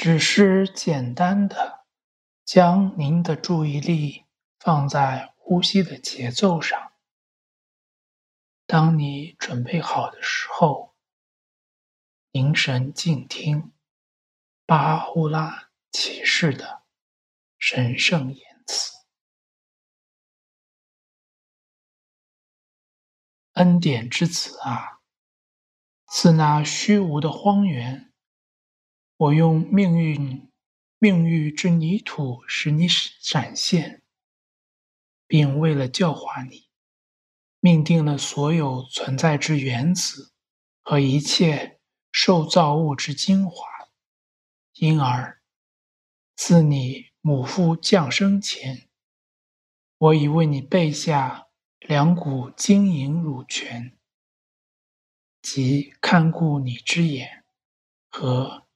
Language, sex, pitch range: English, male, 135-175 Hz